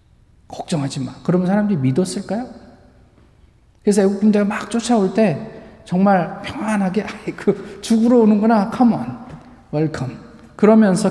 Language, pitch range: Korean, 195-245 Hz